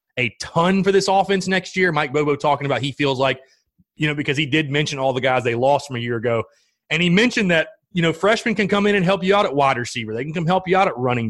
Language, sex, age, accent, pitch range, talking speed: English, male, 30-49, American, 130-190 Hz, 285 wpm